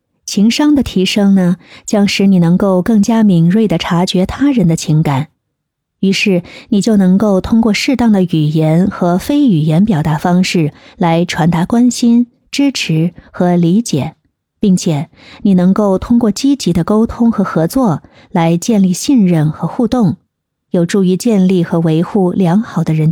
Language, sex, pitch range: Chinese, female, 165-220 Hz